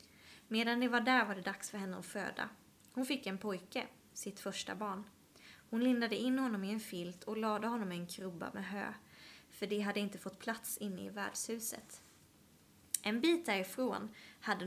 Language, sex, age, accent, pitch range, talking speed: Swedish, female, 20-39, native, 195-235 Hz, 190 wpm